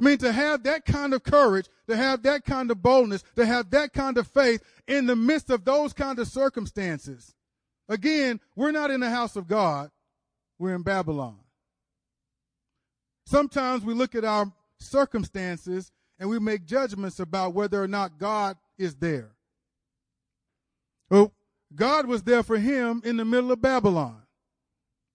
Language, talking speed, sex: English, 160 wpm, male